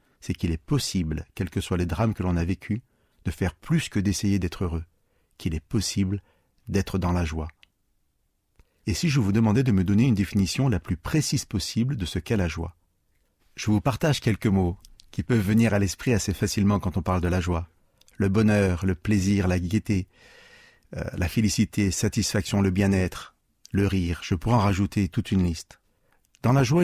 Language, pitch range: French, 95-115 Hz